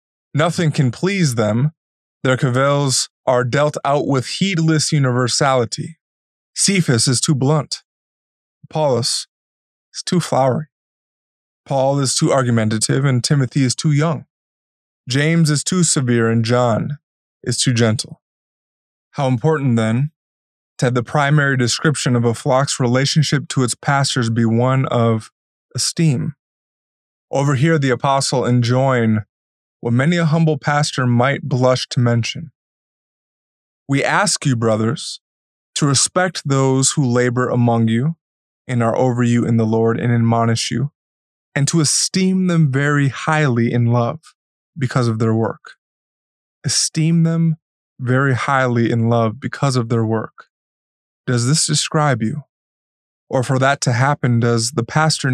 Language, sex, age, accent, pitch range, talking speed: English, male, 20-39, American, 120-150 Hz, 135 wpm